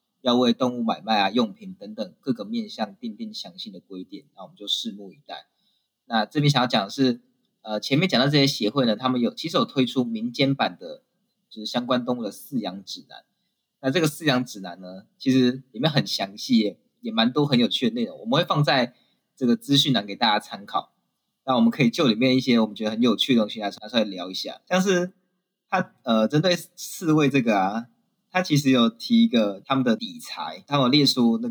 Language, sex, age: Chinese, male, 20-39